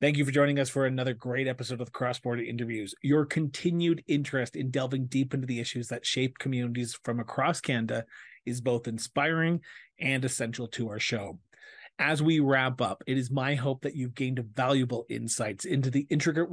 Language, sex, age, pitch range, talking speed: English, male, 30-49, 125-150 Hz, 190 wpm